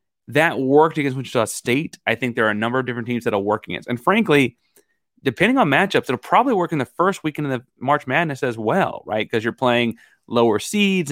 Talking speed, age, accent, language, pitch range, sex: 225 wpm, 30-49, American, English, 110-140 Hz, male